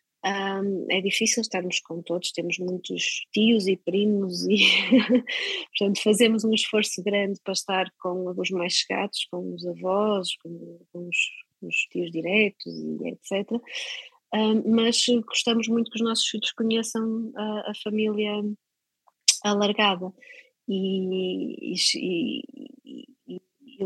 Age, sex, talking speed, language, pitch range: 20-39, female, 120 wpm, Portuguese, 195-245 Hz